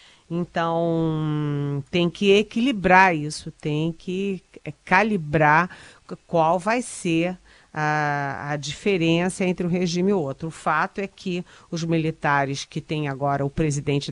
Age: 40-59